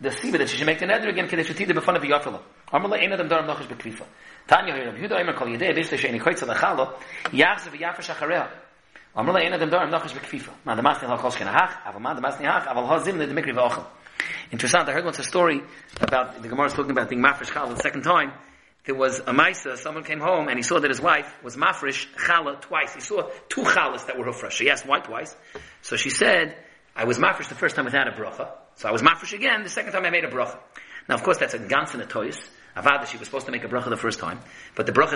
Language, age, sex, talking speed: English, 30-49, male, 160 wpm